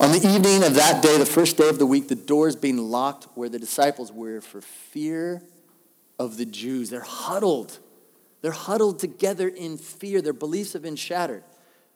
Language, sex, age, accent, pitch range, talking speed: English, male, 40-59, American, 135-195 Hz, 185 wpm